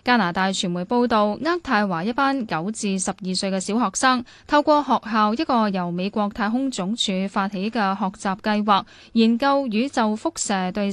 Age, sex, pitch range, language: 10-29, female, 195-240 Hz, Chinese